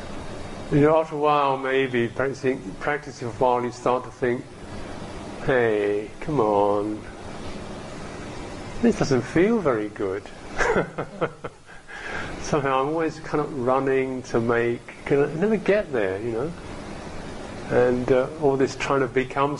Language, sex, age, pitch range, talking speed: English, male, 50-69, 110-150 Hz, 140 wpm